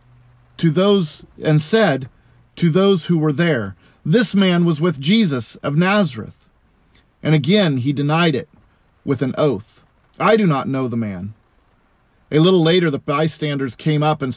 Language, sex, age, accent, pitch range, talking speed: English, male, 40-59, American, 130-185 Hz, 160 wpm